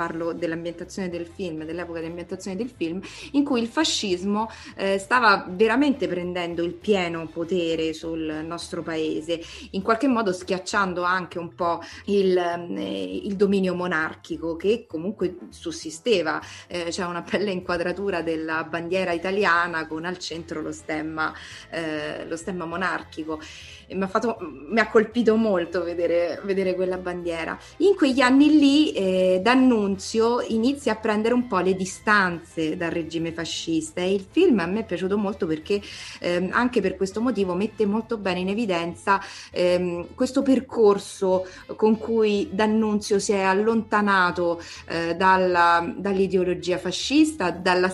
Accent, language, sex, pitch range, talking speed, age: native, Italian, female, 170-215 Hz, 145 wpm, 20-39